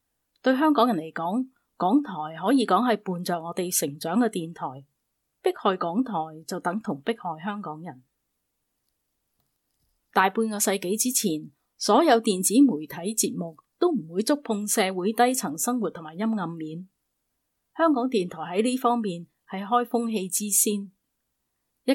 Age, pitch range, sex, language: 30-49, 175-230 Hz, female, Chinese